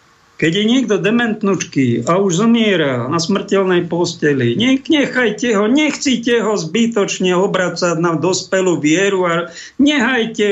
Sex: male